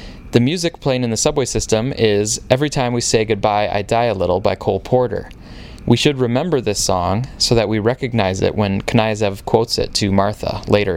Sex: male